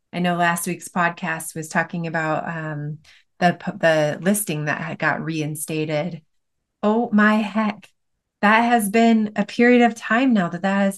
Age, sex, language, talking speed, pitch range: 30-49, female, English, 165 wpm, 165-205 Hz